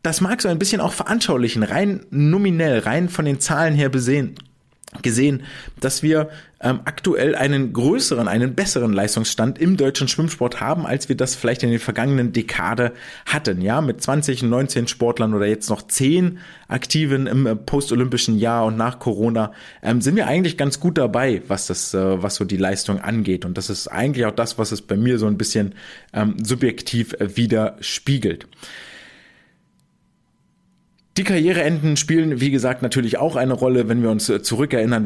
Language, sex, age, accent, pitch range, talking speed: German, male, 30-49, German, 110-150 Hz, 170 wpm